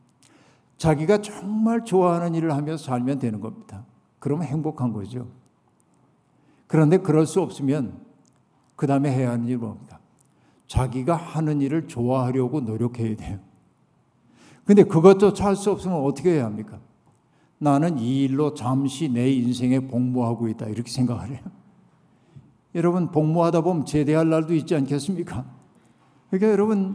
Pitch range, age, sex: 135-175 Hz, 60-79, male